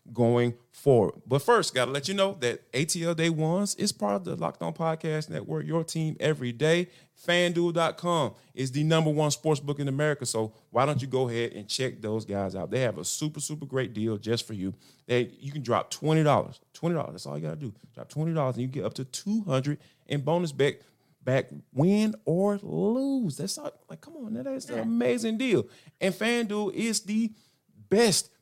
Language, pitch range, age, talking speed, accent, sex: English, 120-185 Hz, 30-49, 195 wpm, American, male